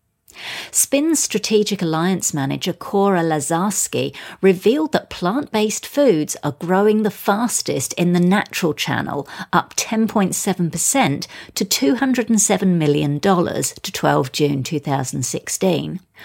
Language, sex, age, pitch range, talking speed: English, female, 50-69, 150-210 Hz, 100 wpm